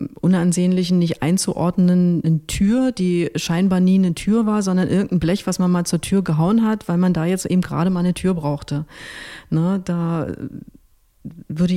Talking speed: 165 wpm